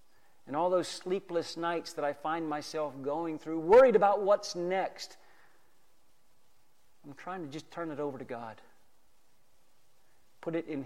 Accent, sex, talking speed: American, male, 150 wpm